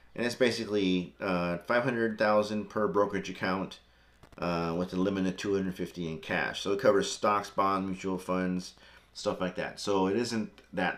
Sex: male